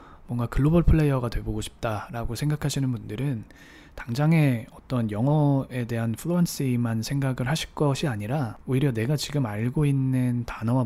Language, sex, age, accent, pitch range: Korean, male, 20-39, native, 110-140 Hz